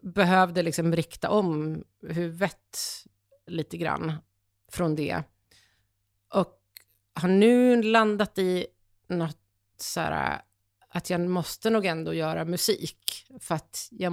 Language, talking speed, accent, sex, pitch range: Swedish, 110 wpm, native, female, 150-185 Hz